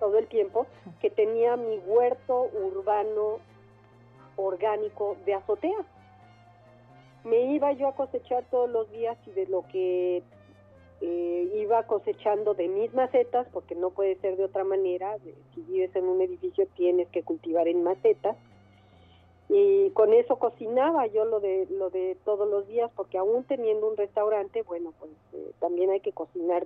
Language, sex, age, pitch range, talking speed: Spanish, female, 40-59, 175-250 Hz, 160 wpm